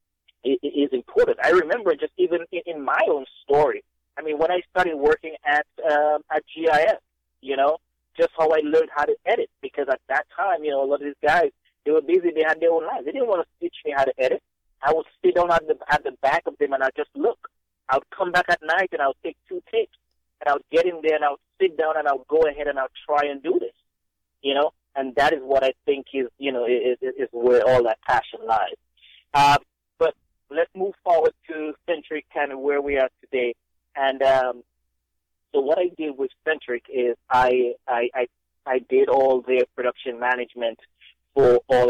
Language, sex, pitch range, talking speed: English, male, 130-190 Hz, 225 wpm